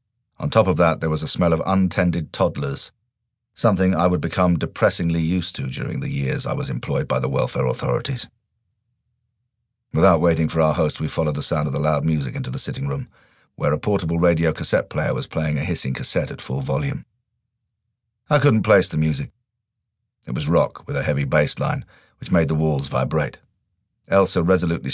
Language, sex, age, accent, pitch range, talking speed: English, male, 40-59, British, 80-115 Hz, 190 wpm